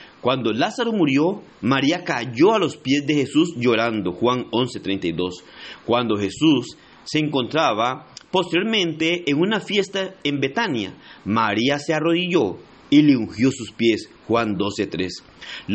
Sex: male